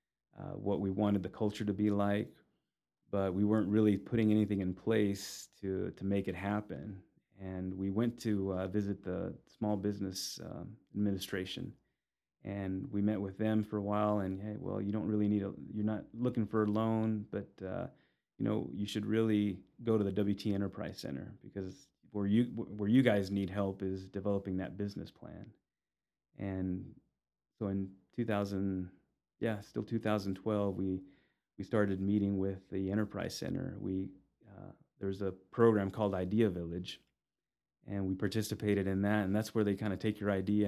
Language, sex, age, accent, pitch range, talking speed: English, male, 30-49, American, 95-105 Hz, 175 wpm